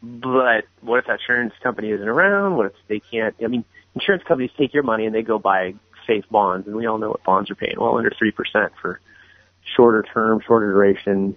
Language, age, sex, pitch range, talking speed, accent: English, 30-49, male, 100-120 Hz, 215 wpm, American